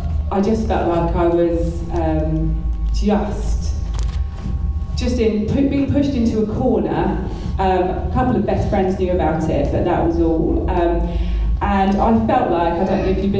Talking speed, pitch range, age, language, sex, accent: 175 wpm, 165-205 Hz, 30-49, English, female, British